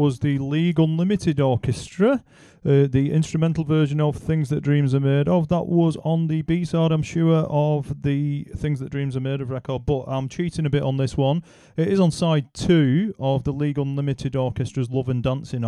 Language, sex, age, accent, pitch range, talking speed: English, male, 30-49, British, 120-150 Hz, 205 wpm